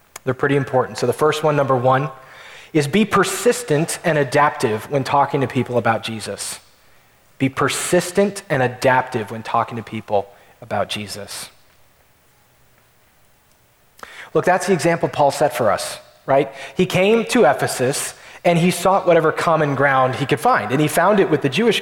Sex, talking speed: male, 160 wpm